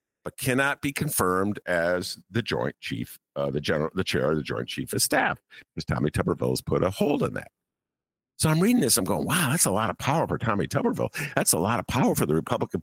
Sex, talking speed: male, 240 wpm